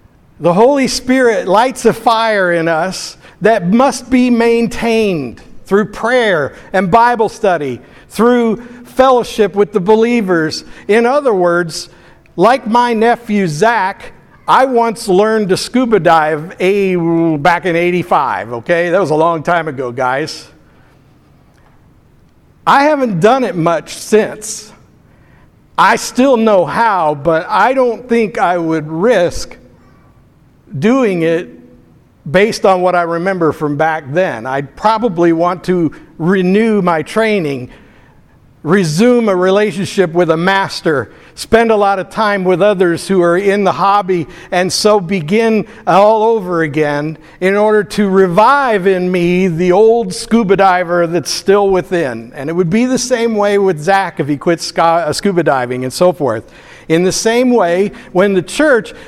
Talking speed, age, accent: 145 wpm, 60-79, American